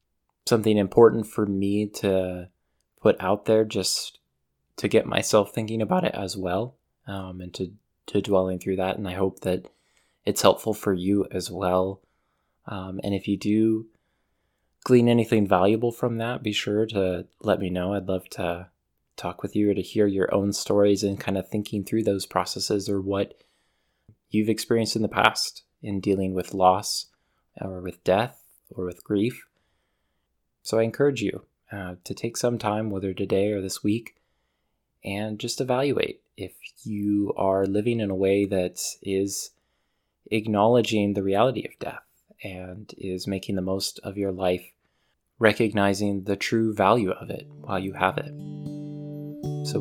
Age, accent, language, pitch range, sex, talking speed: 20-39, American, English, 95-110 Hz, male, 165 wpm